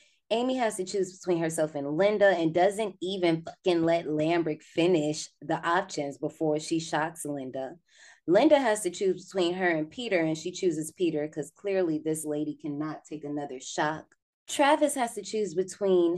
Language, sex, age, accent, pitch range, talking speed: English, female, 20-39, American, 150-180 Hz, 170 wpm